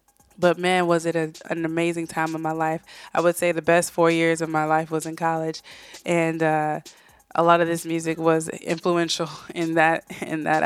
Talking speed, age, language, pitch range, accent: 195 wpm, 20-39, English, 160-175 Hz, American